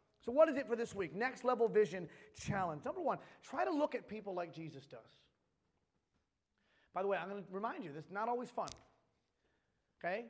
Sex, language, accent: male, English, American